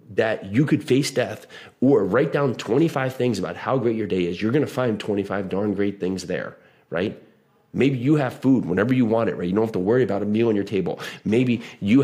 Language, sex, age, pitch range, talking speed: English, male, 30-49, 105-130 Hz, 240 wpm